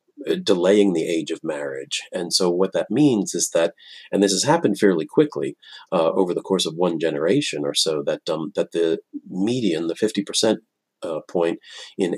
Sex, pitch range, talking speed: male, 95-125 Hz, 180 wpm